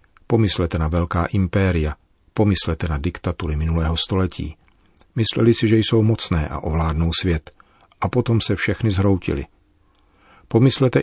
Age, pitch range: 40-59, 85-100 Hz